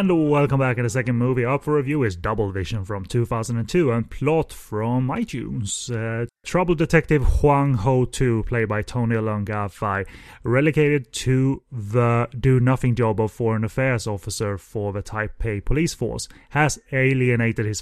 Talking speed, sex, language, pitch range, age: 160 wpm, male, English, 110-130 Hz, 30-49